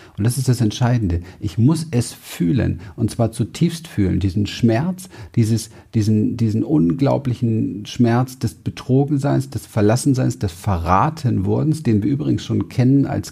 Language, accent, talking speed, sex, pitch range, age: German, German, 140 wpm, male, 100-130 Hz, 50-69